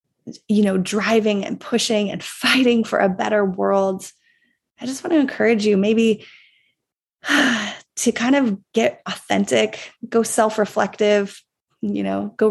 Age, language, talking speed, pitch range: 20-39, English, 135 wpm, 210-265 Hz